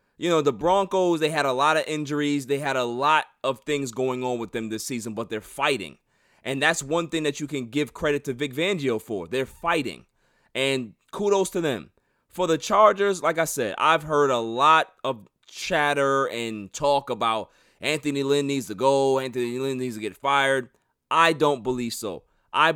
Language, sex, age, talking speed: English, male, 30-49, 200 wpm